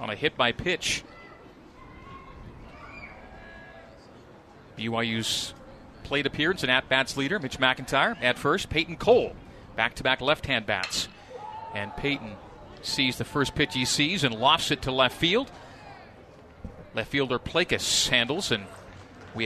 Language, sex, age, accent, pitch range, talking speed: English, male, 40-59, American, 115-145 Hz, 115 wpm